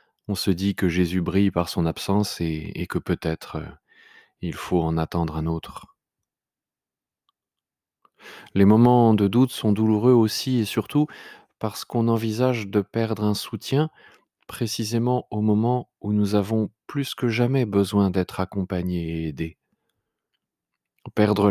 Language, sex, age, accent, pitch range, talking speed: French, male, 30-49, French, 95-115 Hz, 140 wpm